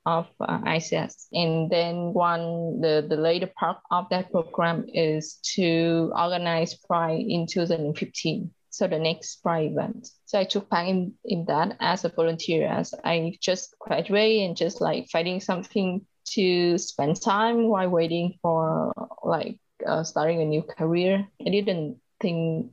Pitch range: 165-200 Hz